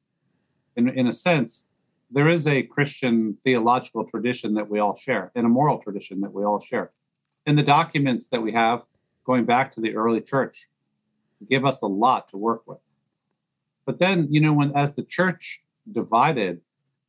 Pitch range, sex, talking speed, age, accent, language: 115-150 Hz, male, 175 wpm, 50-69, American, Danish